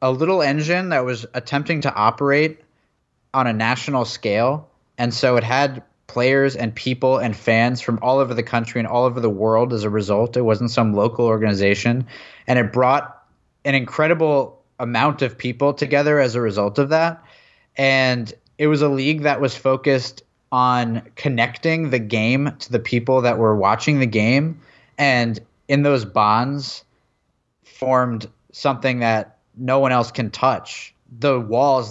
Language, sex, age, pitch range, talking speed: English, male, 20-39, 115-140 Hz, 165 wpm